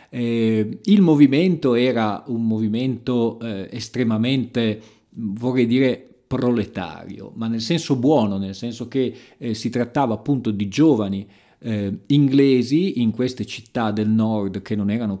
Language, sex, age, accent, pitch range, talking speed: Italian, male, 40-59, native, 105-130 Hz, 135 wpm